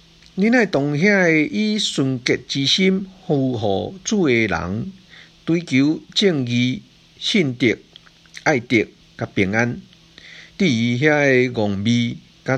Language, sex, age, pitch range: Chinese, male, 50-69, 105-165 Hz